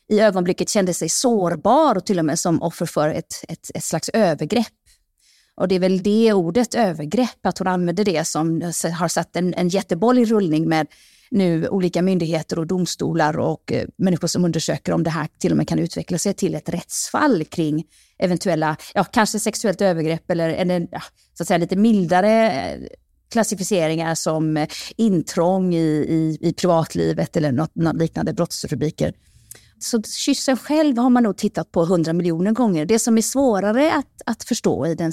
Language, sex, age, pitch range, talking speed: Swedish, female, 30-49, 165-220 Hz, 180 wpm